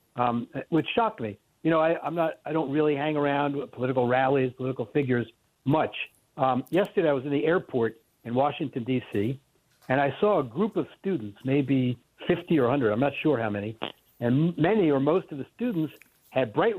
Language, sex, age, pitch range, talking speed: English, male, 60-79, 125-155 Hz, 195 wpm